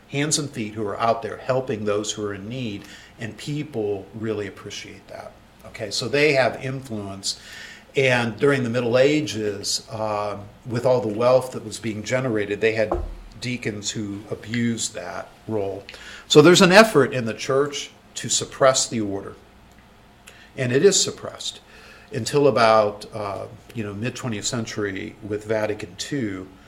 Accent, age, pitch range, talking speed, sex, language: American, 50-69, 105-125 Hz, 155 wpm, male, English